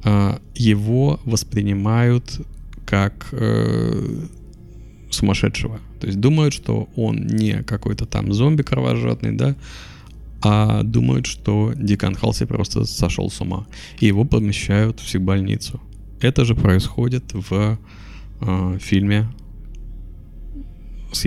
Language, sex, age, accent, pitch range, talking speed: Russian, male, 20-39, native, 100-115 Hz, 100 wpm